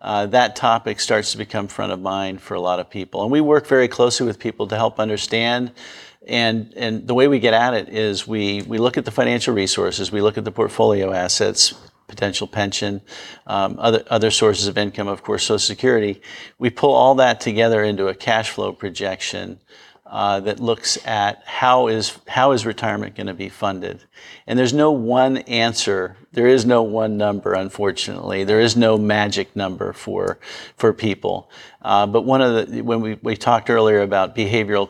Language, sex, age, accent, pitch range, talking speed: English, male, 50-69, American, 100-115 Hz, 195 wpm